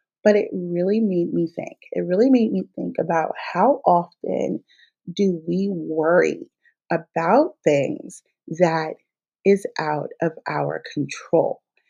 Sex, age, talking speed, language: female, 30-49, 125 wpm, English